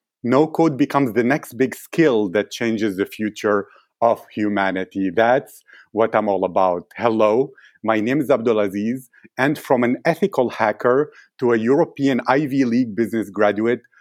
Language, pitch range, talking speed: English, 105-125 Hz, 145 wpm